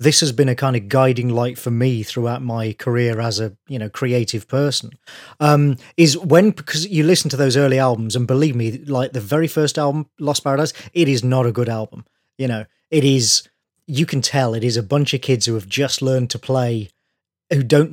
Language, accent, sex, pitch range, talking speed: English, British, male, 120-150 Hz, 220 wpm